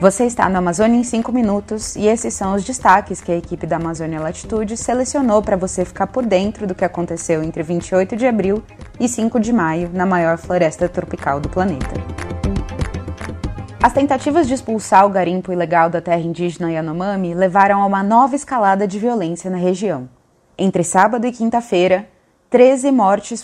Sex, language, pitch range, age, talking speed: female, Portuguese, 170-215 Hz, 20-39, 170 wpm